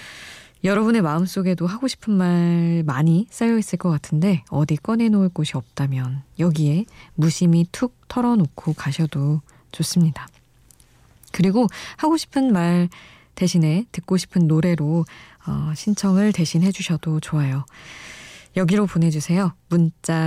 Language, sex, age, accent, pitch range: Korean, female, 20-39, native, 150-190 Hz